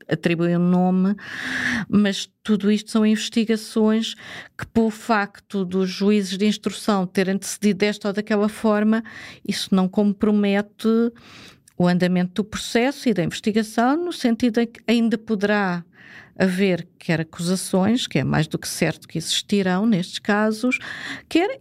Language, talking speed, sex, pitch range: Portuguese, 145 wpm, female, 180-220 Hz